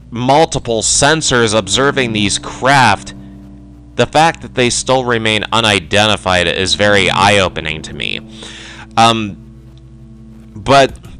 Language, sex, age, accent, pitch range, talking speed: English, male, 30-49, American, 105-125 Hz, 105 wpm